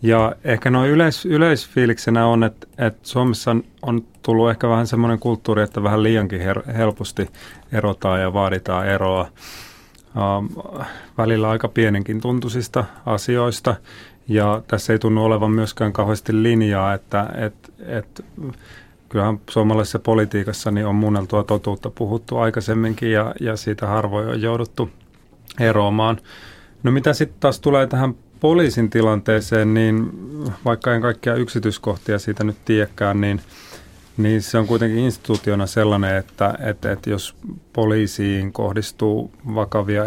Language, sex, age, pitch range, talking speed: Finnish, male, 30-49, 105-115 Hz, 130 wpm